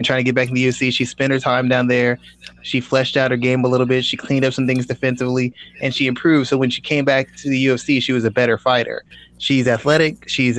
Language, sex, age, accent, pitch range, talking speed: English, male, 20-39, American, 130-150 Hz, 265 wpm